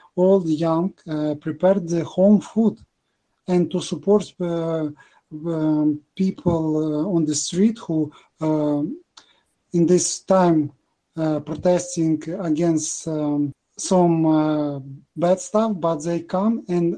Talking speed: 125 wpm